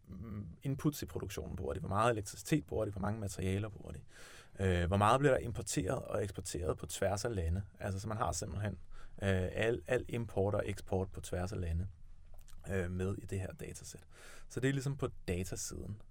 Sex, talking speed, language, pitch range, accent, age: male, 200 wpm, Danish, 95-115 Hz, native, 30-49